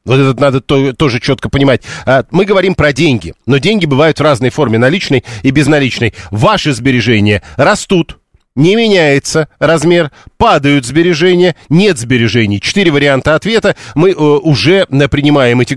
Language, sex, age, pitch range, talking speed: Russian, male, 40-59, 130-160 Hz, 135 wpm